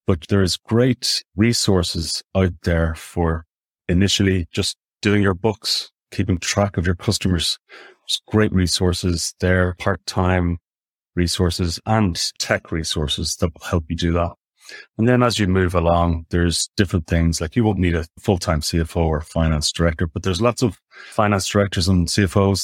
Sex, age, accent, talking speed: male, 30-49, Irish, 160 wpm